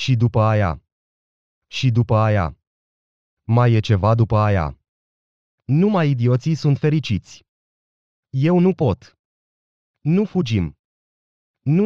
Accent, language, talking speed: native, Romanian, 105 wpm